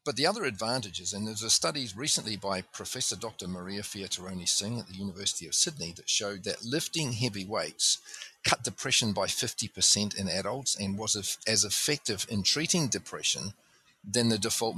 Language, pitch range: English, 100-125 Hz